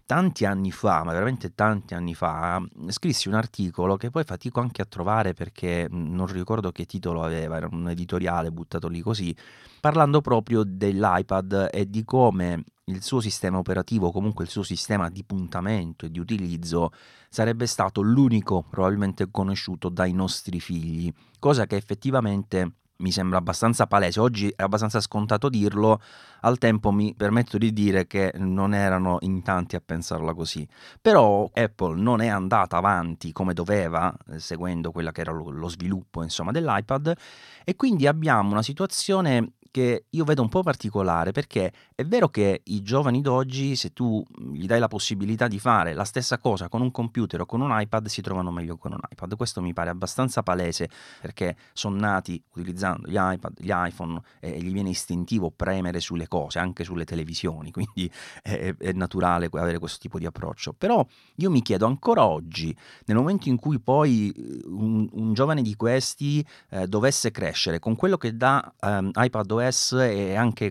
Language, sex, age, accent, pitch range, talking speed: Italian, male, 30-49, native, 90-115 Hz, 170 wpm